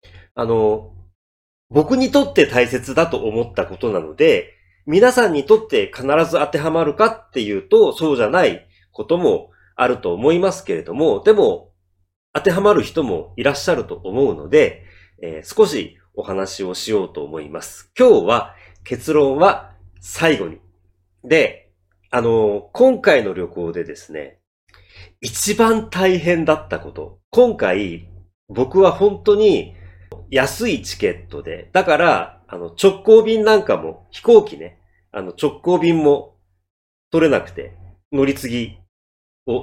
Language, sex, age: Japanese, male, 40-59